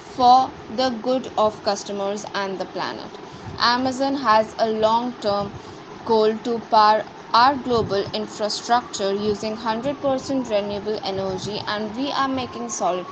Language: English